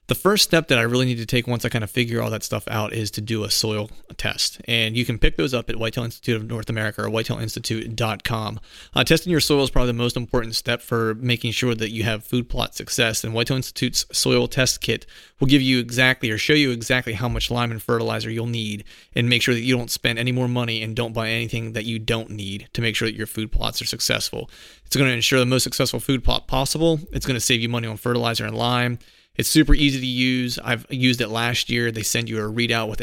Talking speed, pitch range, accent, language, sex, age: 255 wpm, 110-125 Hz, American, English, male, 30-49